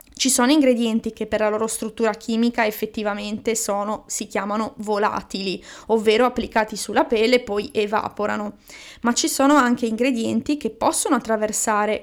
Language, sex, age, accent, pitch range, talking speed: Italian, female, 20-39, native, 215-260 Hz, 140 wpm